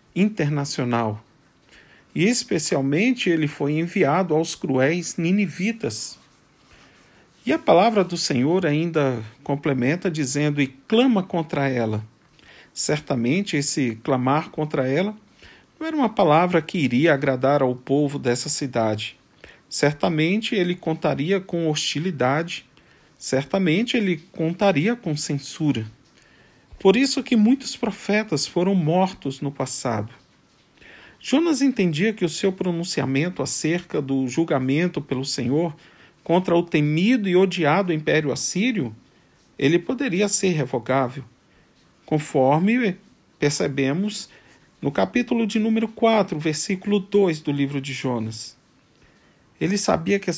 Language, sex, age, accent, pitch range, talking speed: Portuguese, male, 40-59, Brazilian, 140-195 Hz, 115 wpm